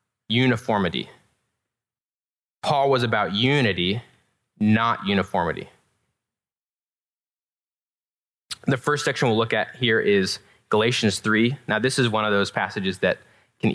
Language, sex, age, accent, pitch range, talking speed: English, male, 20-39, American, 100-125 Hz, 115 wpm